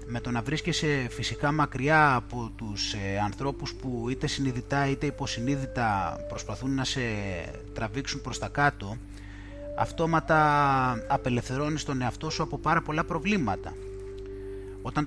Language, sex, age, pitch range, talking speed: Greek, male, 30-49, 110-150 Hz, 125 wpm